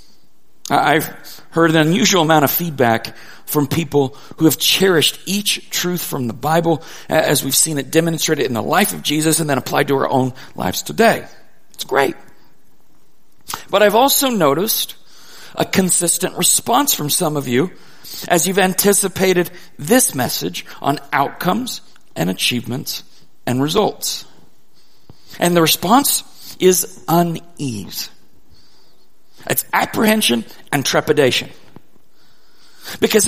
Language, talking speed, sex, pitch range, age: English, 125 wpm, male, 160-215 Hz, 40-59